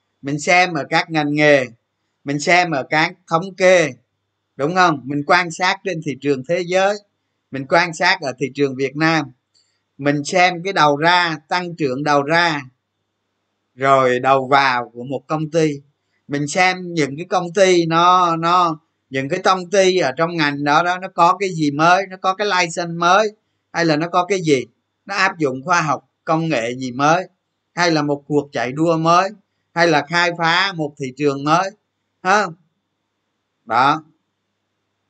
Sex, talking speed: male, 180 wpm